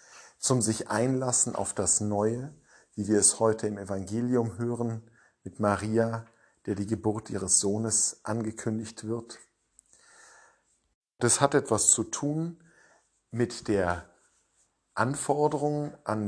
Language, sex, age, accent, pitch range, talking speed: German, male, 50-69, German, 100-120 Hz, 115 wpm